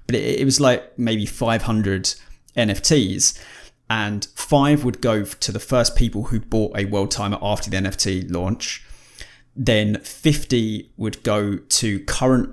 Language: English